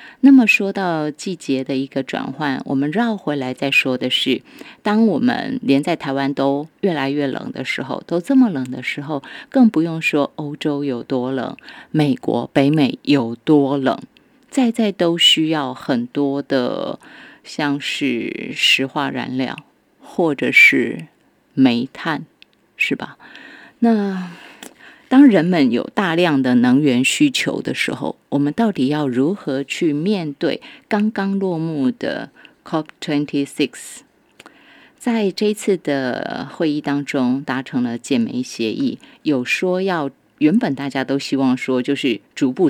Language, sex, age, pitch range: Chinese, female, 30-49, 140-225 Hz